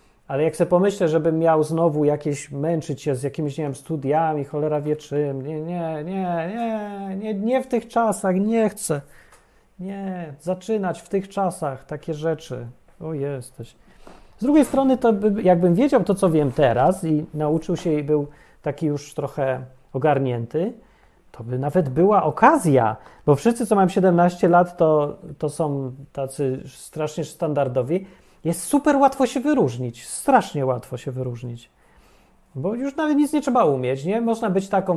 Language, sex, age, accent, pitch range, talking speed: Polish, male, 30-49, native, 150-205 Hz, 160 wpm